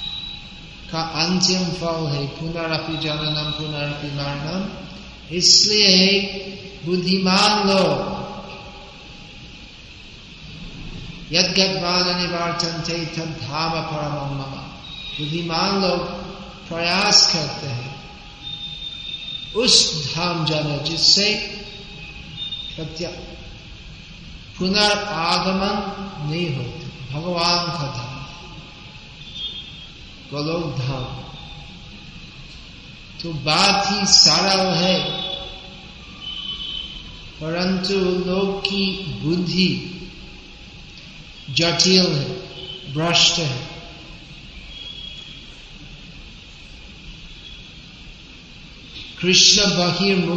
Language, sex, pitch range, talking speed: Hindi, male, 150-185 Hz, 55 wpm